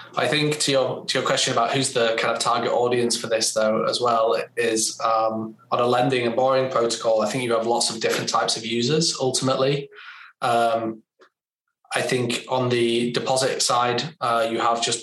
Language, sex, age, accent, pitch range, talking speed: English, male, 10-29, British, 115-125 Hz, 195 wpm